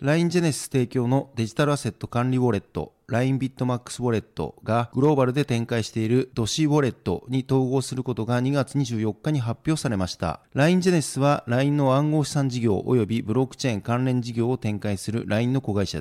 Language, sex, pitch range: Japanese, male, 115-135 Hz